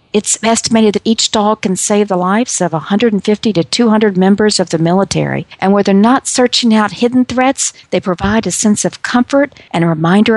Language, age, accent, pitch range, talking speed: English, 50-69, American, 180-225 Hz, 195 wpm